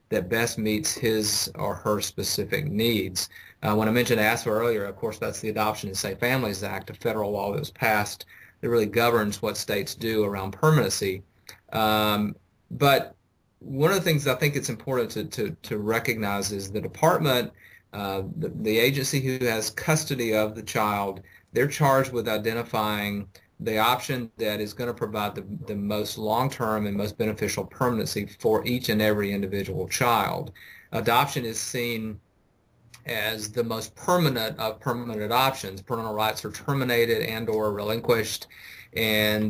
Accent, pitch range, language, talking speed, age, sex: American, 105-125 Hz, English, 165 wpm, 30-49, male